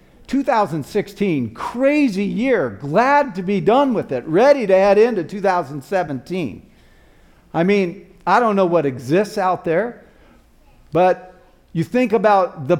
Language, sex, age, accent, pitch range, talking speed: English, male, 50-69, American, 160-220 Hz, 130 wpm